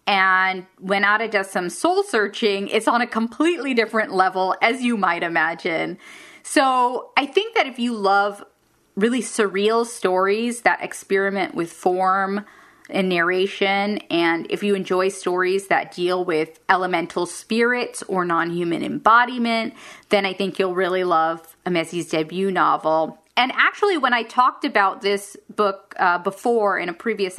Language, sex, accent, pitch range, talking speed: English, female, American, 180-235 Hz, 150 wpm